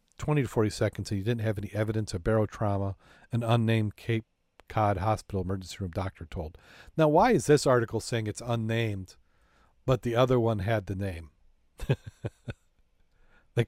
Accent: American